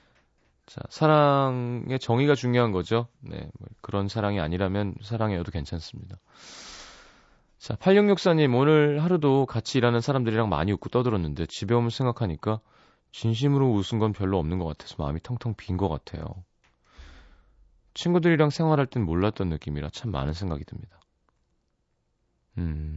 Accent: native